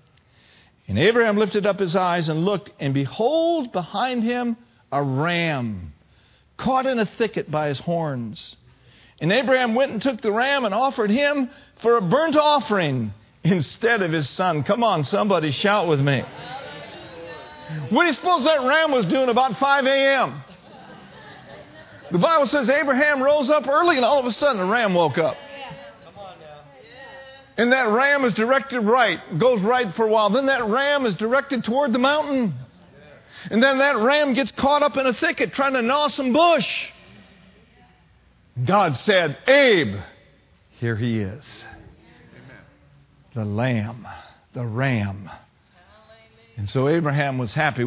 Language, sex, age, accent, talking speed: English, male, 50-69, American, 150 wpm